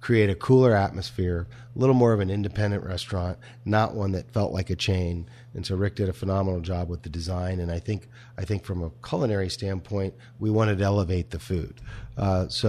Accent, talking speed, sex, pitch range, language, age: American, 215 wpm, male, 95-120 Hz, English, 40-59